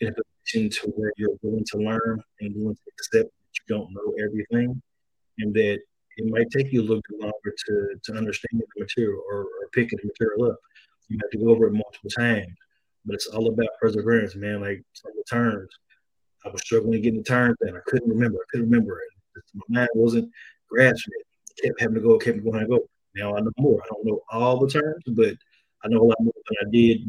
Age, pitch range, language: 30-49, 105-130 Hz, English